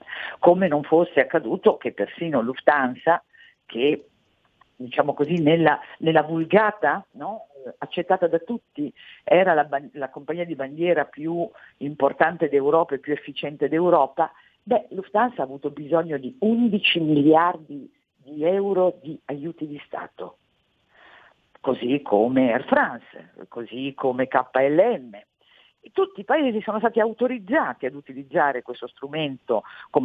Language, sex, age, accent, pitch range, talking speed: Italian, female, 50-69, native, 140-195 Hz, 125 wpm